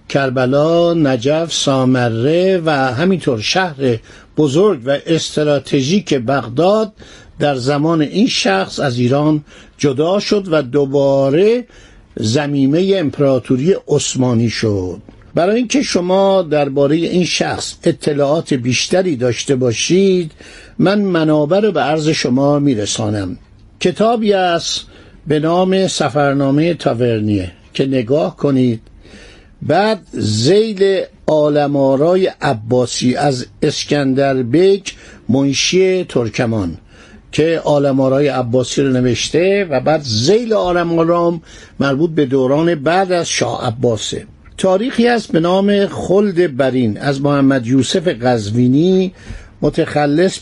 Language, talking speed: Persian, 100 wpm